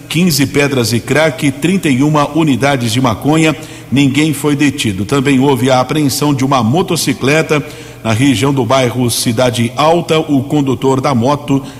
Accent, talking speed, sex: Brazilian, 140 wpm, male